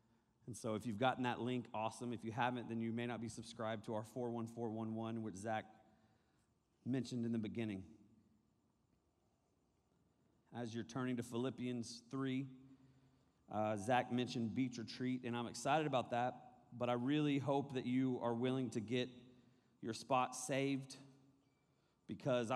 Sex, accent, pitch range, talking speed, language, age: male, American, 115-135 Hz, 150 wpm, English, 30-49